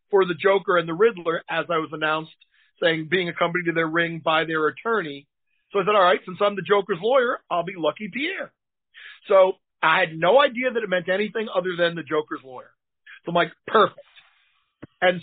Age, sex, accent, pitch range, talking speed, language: 40-59, male, American, 165-220 Hz, 205 wpm, English